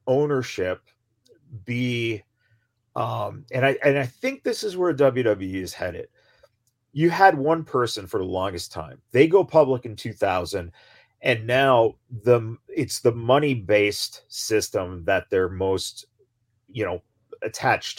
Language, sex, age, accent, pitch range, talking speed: English, male, 40-59, American, 100-135 Hz, 135 wpm